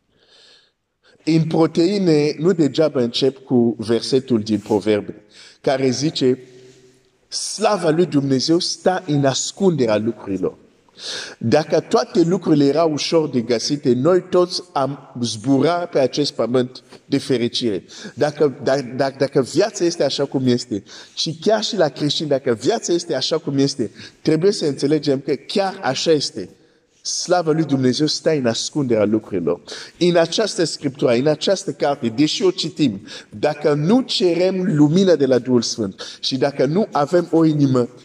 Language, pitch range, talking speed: Romanian, 130-165 Hz, 140 wpm